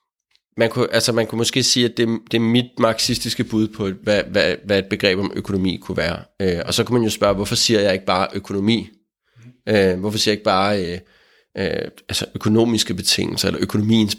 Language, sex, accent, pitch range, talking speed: Danish, male, native, 105-125 Hz, 210 wpm